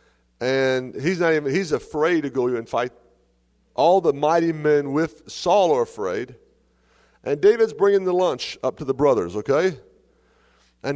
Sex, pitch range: male, 105-145 Hz